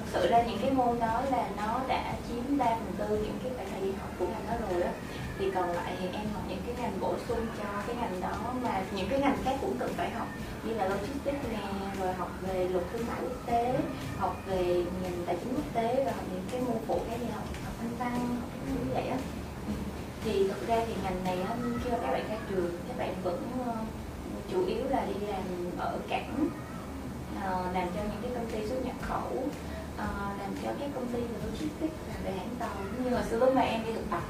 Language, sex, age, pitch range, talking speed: Vietnamese, female, 20-39, 190-245 Hz, 225 wpm